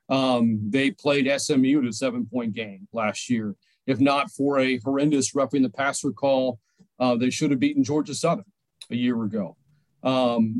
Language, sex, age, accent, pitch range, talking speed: English, male, 40-59, American, 125-155 Hz, 170 wpm